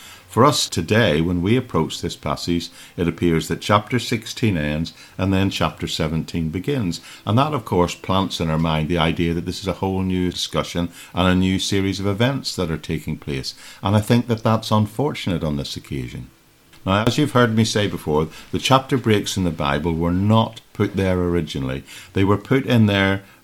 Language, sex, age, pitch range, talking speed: English, male, 50-69, 85-110 Hz, 200 wpm